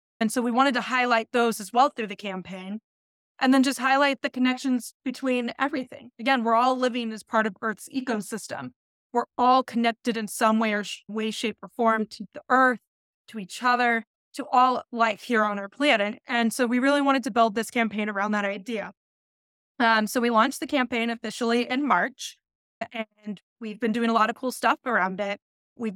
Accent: American